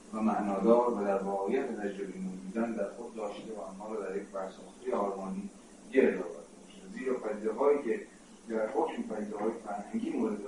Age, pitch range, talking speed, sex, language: 40-59, 100-140 Hz, 155 wpm, male, Persian